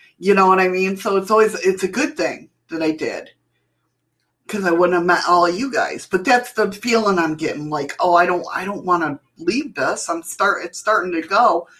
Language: English